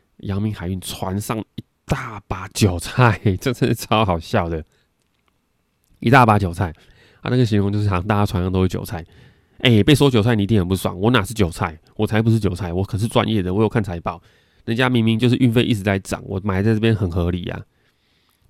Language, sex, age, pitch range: Chinese, male, 20-39, 95-115 Hz